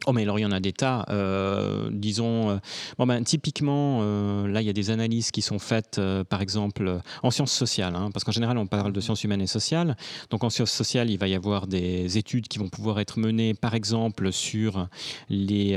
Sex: male